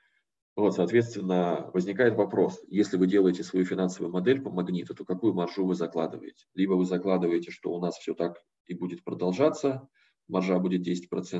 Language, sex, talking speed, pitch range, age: Russian, male, 160 wpm, 90-105 Hz, 20-39